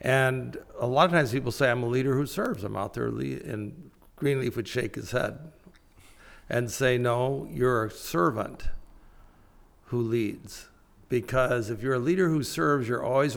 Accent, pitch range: American, 110-135 Hz